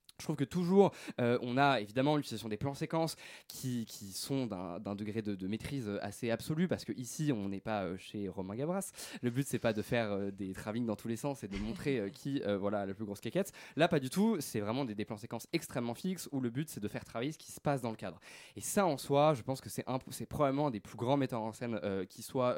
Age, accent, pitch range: 20-39, French, 110-155 Hz